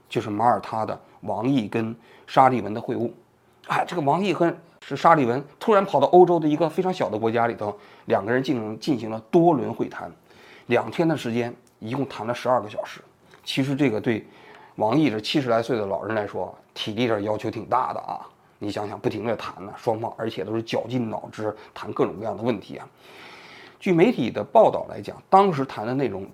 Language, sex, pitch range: Chinese, male, 115-170 Hz